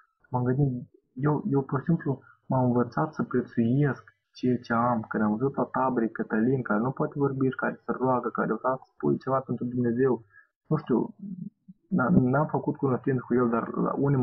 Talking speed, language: 180 wpm, Romanian